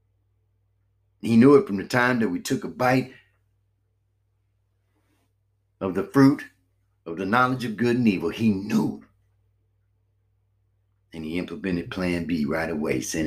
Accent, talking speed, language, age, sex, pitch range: American, 140 wpm, English, 60-79, male, 95-105 Hz